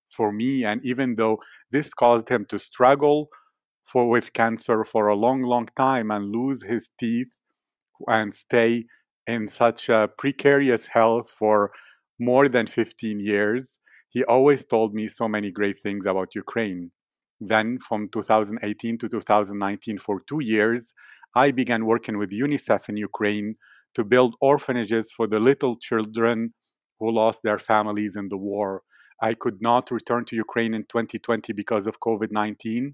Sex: male